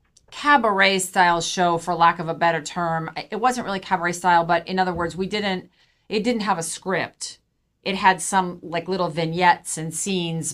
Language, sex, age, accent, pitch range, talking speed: English, female, 40-59, American, 155-195 Hz, 190 wpm